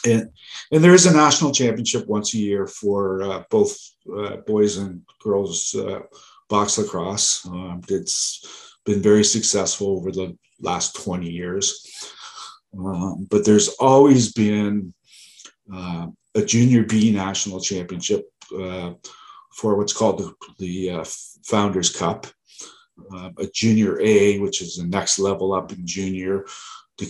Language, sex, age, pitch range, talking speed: English, male, 50-69, 95-115 Hz, 140 wpm